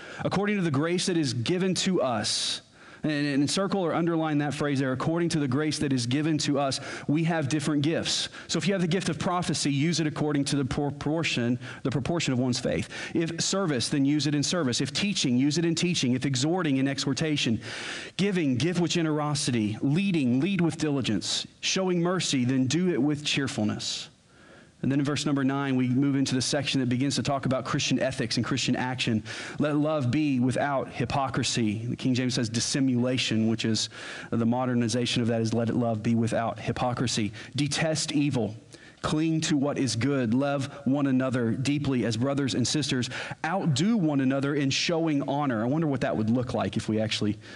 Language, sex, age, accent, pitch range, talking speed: English, male, 40-59, American, 125-155 Hz, 195 wpm